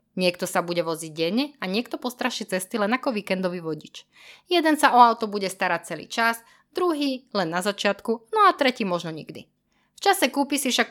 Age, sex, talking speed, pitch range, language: 20-39, female, 195 wpm, 170-240 Hz, Slovak